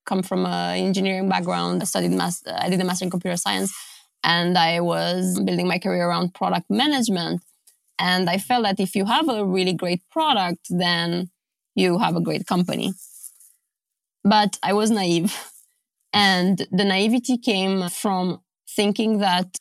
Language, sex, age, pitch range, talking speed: English, female, 20-39, 175-195 Hz, 160 wpm